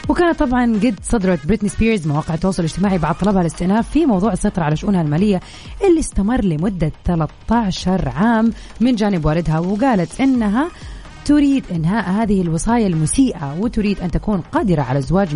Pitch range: 170-230 Hz